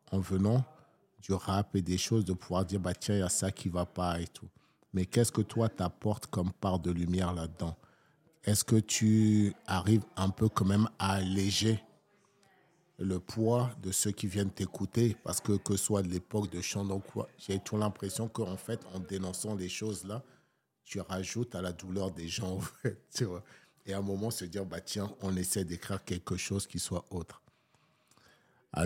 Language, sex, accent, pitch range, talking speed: French, male, French, 95-110 Hz, 200 wpm